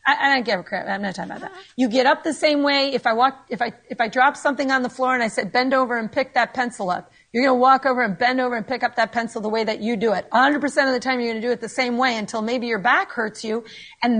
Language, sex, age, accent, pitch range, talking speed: English, female, 40-59, American, 225-280 Hz, 325 wpm